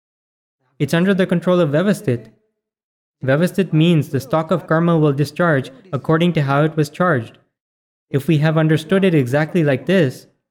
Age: 20-39